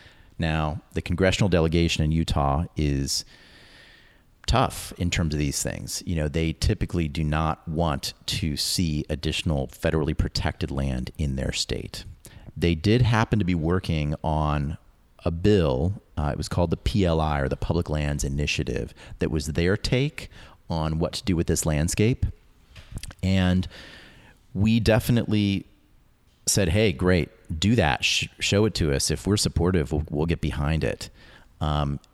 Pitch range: 75-95 Hz